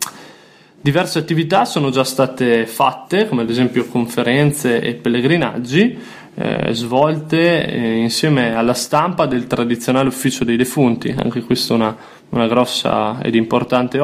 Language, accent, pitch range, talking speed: Italian, native, 115-135 Hz, 135 wpm